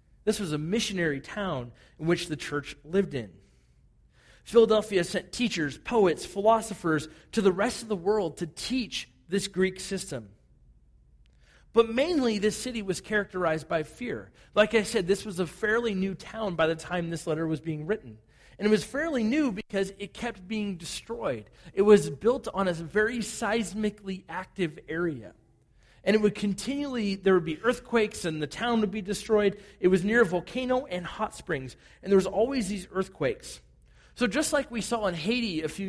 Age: 40-59